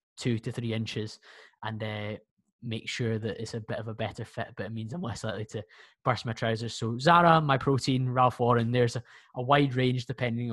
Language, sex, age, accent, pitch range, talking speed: English, male, 20-39, British, 120-145 Hz, 215 wpm